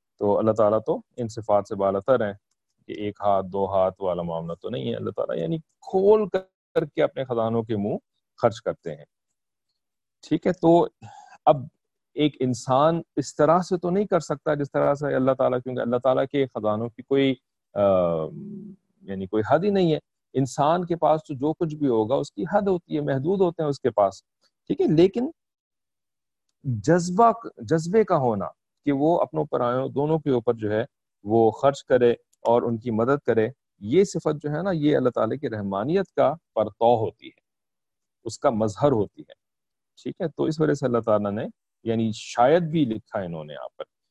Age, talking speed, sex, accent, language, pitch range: 40-59, 150 wpm, male, Indian, English, 115-165 Hz